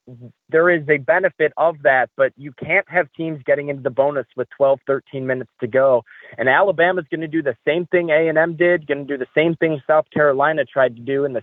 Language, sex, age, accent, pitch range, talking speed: English, male, 20-39, American, 130-160 Hz, 245 wpm